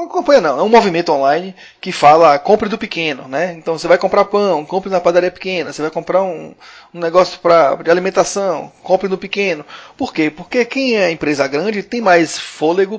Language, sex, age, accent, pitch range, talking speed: Portuguese, male, 30-49, Brazilian, 155-200 Hz, 205 wpm